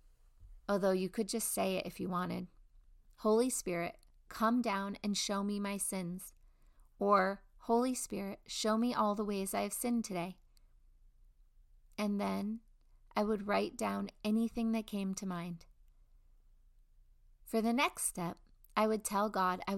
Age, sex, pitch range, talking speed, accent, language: 30-49, female, 185-220 Hz, 150 wpm, American, English